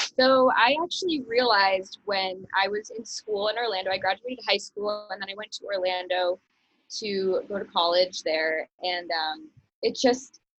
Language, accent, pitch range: English, American, 195-235 Hz